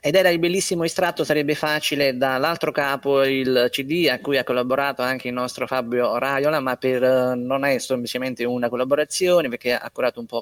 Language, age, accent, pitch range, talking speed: Italian, 30-49, native, 125-170 Hz, 185 wpm